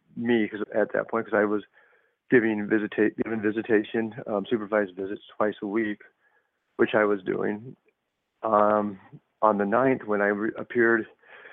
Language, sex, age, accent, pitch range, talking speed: English, male, 50-69, American, 105-115 Hz, 140 wpm